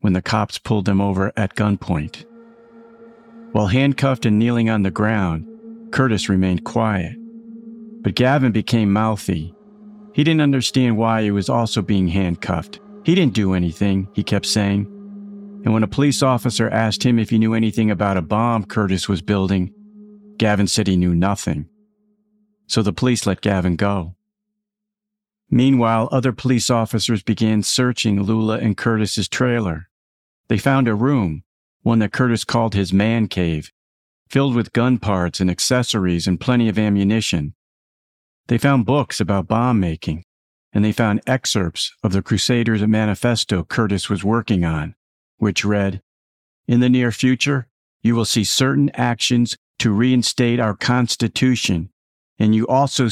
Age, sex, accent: 50-69, male, American